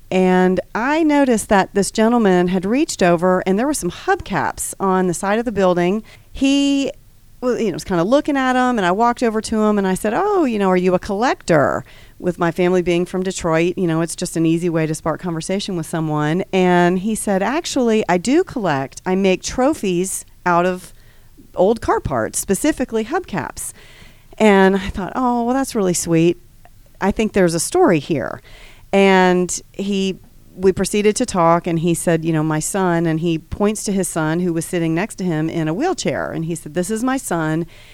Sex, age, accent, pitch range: female, 40-59, American, 165-210 Hz